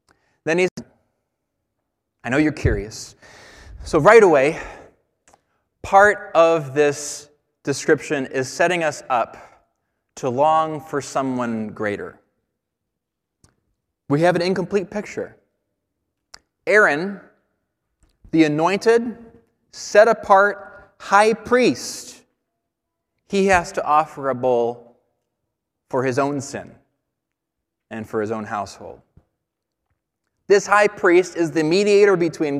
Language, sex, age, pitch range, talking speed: English, male, 20-39, 135-185 Hz, 100 wpm